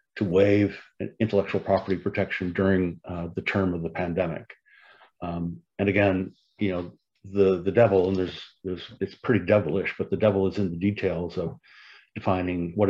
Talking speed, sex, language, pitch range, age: 165 wpm, male, English, 90-100 Hz, 50-69